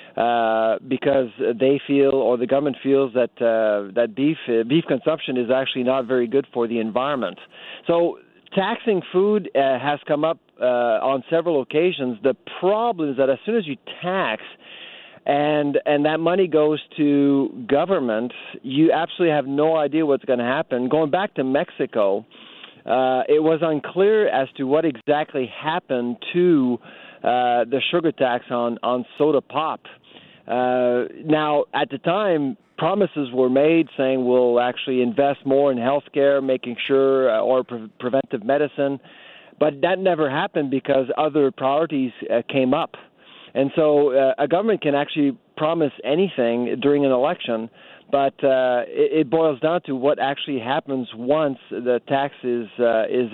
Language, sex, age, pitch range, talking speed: English, male, 50-69, 125-155 Hz, 160 wpm